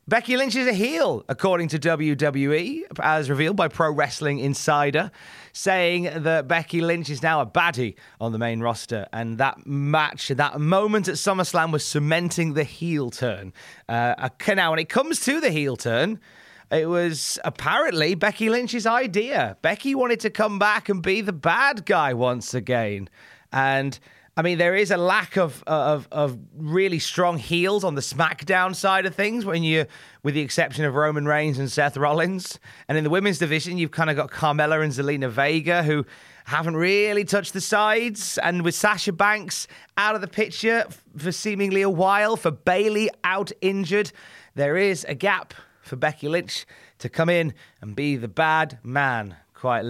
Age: 30-49